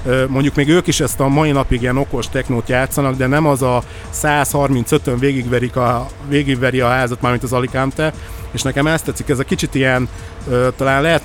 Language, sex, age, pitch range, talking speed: Hungarian, male, 60-79, 120-140 Hz, 180 wpm